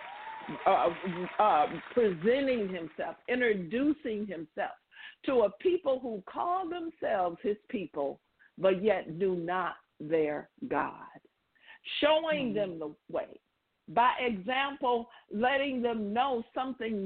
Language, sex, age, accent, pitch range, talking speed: English, female, 50-69, American, 195-270 Hz, 105 wpm